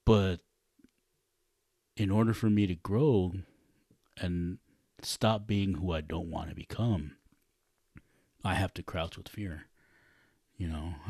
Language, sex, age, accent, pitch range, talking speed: English, male, 30-49, American, 80-105 Hz, 130 wpm